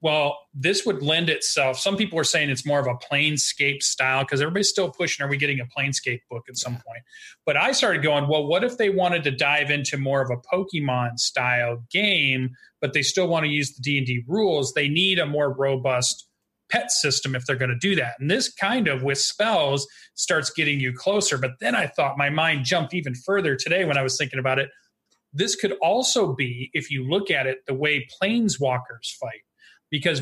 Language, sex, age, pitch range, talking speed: English, male, 30-49, 130-165 Hz, 215 wpm